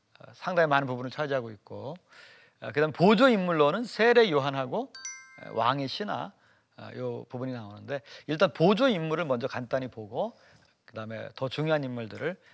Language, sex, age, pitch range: Korean, male, 40-59, 135-225 Hz